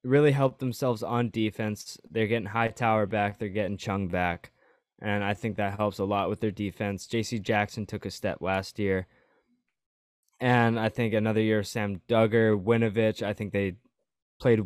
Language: English